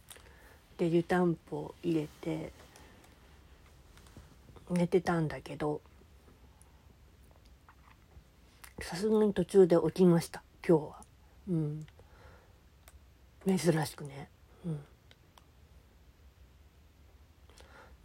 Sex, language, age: female, Japanese, 40-59